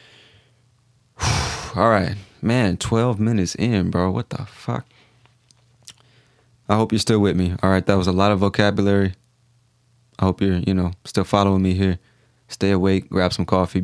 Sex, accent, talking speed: male, American, 165 wpm